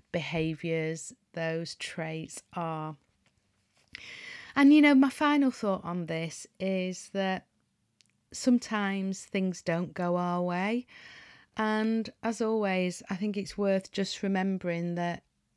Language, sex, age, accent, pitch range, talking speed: English, female, 30-49, British, 170-200 Hz, 115 wpm